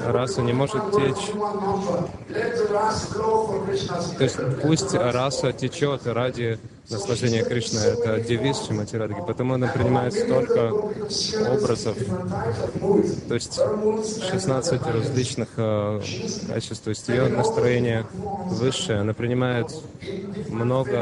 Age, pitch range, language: 20-39, 115-165 Hz, Russian